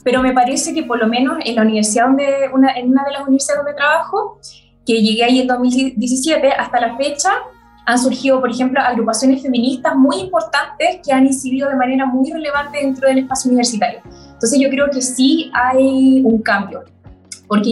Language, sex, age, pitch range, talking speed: Spanish, female, 20-39, 230-275 Hz, 185 wpm